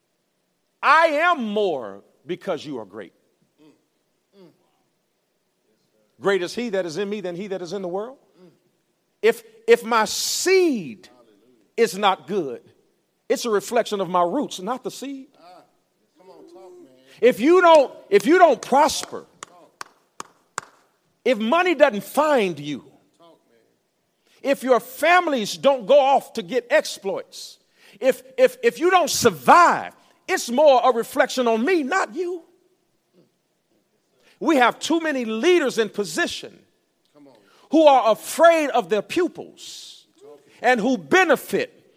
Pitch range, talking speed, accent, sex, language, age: 200-335 Hz, 125 wpm, American, male, English, 50-69